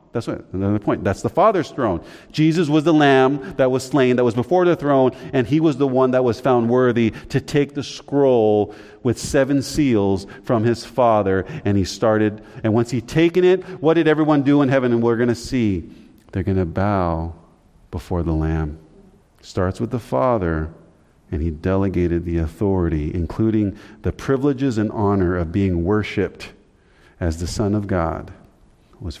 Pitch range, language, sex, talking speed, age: 95-135 Hz, English, male, 180 wpm, 40-59